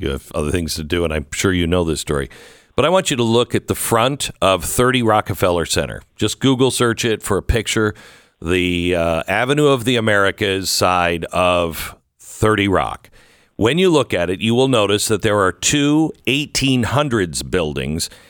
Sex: male